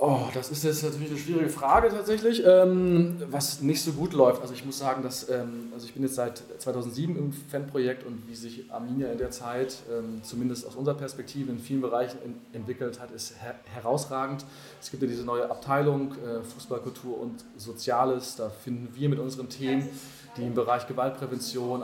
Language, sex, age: German, male, 30-49